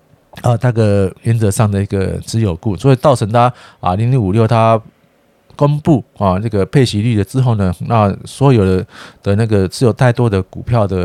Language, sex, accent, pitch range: Chinese, male, native, 100-130 Hz